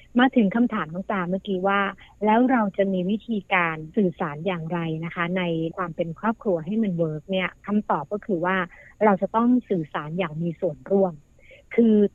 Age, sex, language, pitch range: 60-79, female, Thai, 180-225 Hz